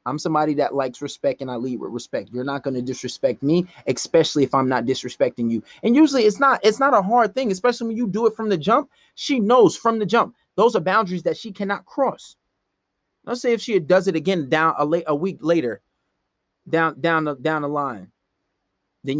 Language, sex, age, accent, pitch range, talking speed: English, male, 30-49, American, 130-190 Hz, 220 wpm